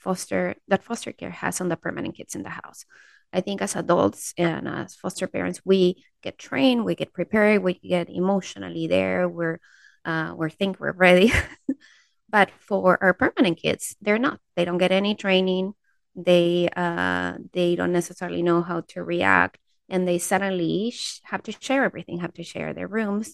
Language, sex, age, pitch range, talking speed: English, female, 20-39, 170-210 Hz, 175 wpm